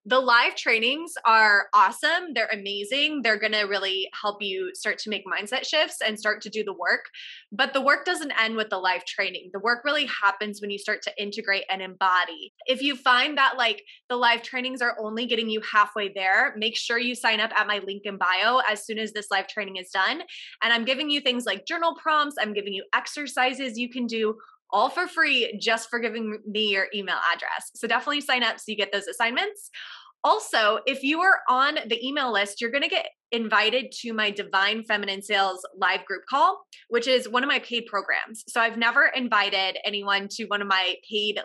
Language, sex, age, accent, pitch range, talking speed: English, female, 20-39, American, 205-255 Hz, 215 wpm